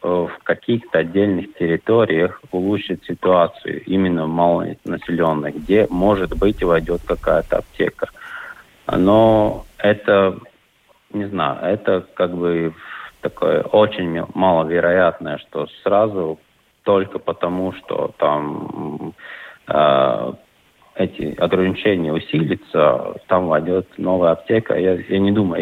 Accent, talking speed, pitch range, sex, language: native, 100 wpm, 85-100 Hz, male, Russian